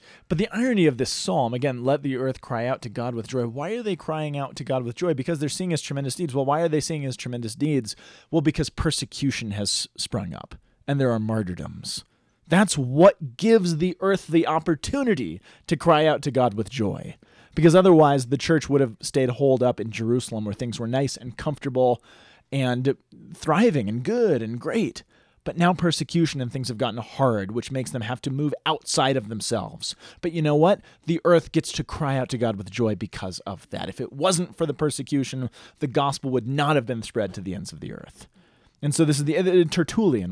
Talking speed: 215 wpm